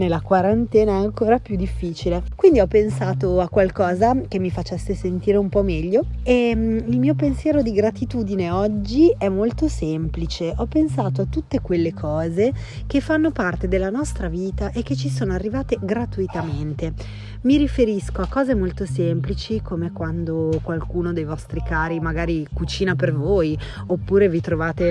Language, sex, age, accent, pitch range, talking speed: Italian, female, 30-49, native, 165-210 Hz, 155 wpm